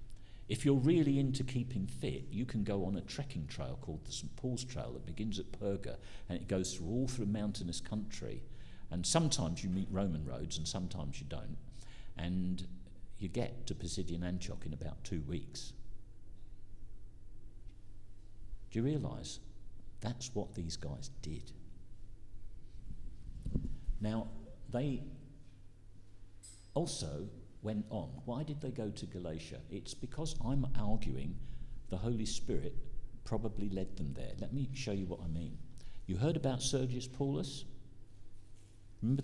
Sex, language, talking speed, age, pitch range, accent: male, English, 140 wpm, 50-69, 95-125 Hz, British